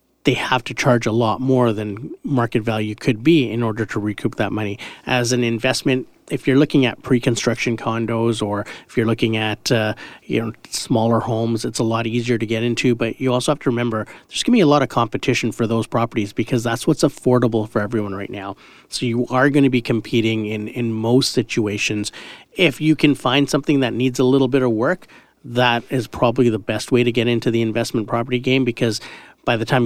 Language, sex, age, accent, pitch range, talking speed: English, male, 40-59, American, 115-130 Hz, 220 wpm